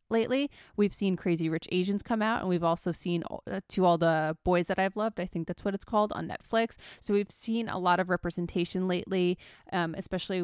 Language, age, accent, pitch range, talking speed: English, 20-39, American, 170-200 Hz, 215 wpm